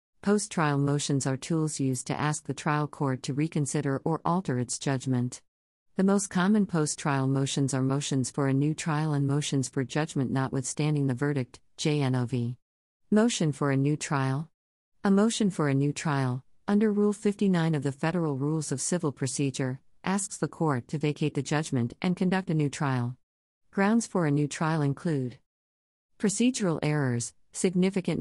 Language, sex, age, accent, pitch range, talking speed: English, female, 50-69, American, 135-165 Hz, 165 wpm